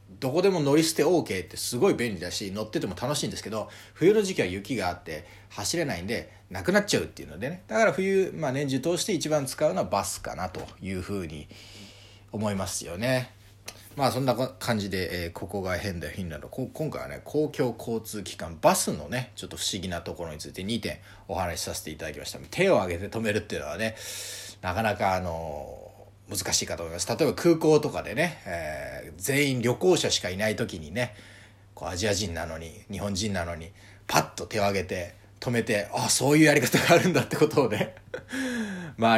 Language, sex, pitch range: Japanese, male, 95-135 Hz